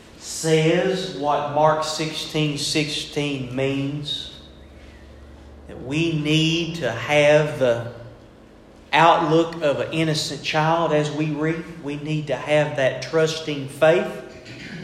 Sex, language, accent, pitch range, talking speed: male, English, American, 130-175 Hz, 115 wpm